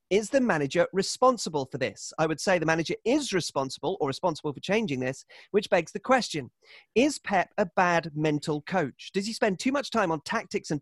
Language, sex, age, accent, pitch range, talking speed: English, male, 30-49, British, 145-205 Hz, 205 wpm